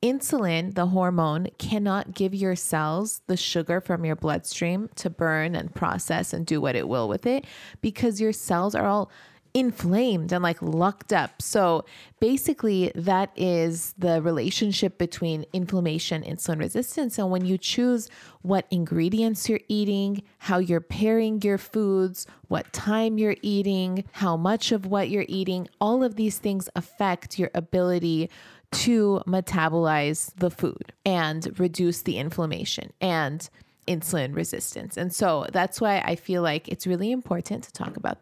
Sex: female